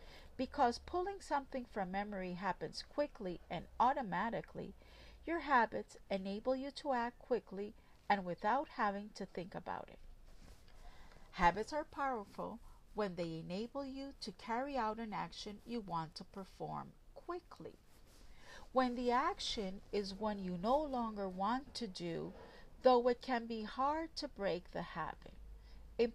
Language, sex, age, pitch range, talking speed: English, female, 50-69, 185-255 Hz, 140 wpm